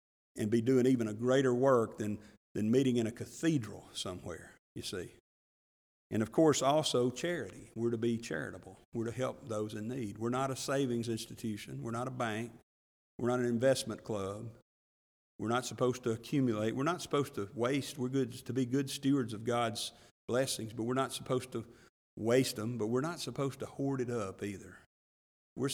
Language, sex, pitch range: English, male, 110-130 Hz